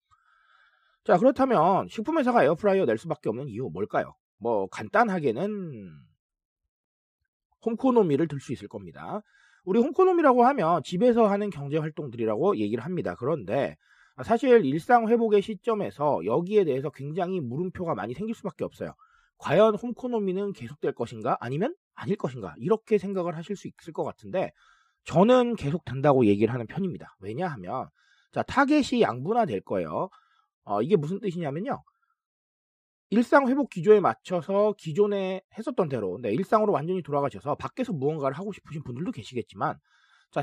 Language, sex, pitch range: Korean, male, 150-230 Hz